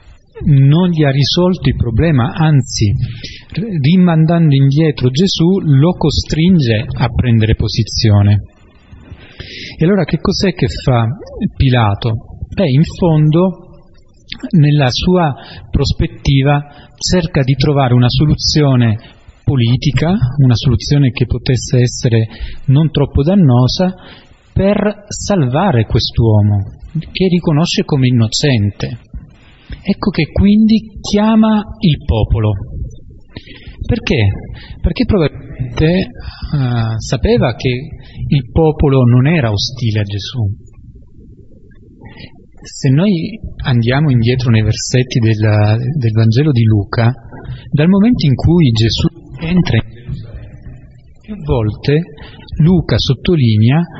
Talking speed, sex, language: 100 wpm, male, Italian